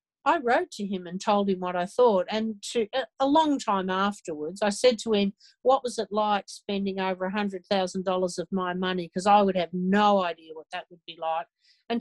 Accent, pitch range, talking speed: Australian, 180-225 Hz, 205 wpm